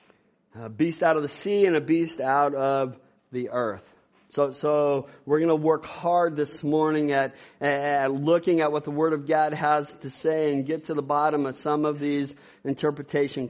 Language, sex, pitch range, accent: English, male, 150-185 Hz, American